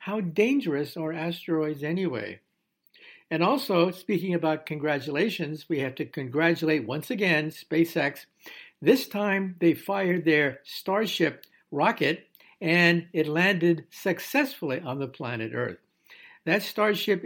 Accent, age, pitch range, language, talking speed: American, 60-79, 150-195 Hz, English, 120 wpm